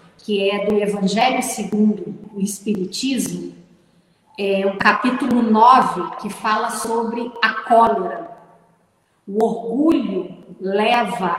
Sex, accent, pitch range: female, Brazilian, 200-270 Hz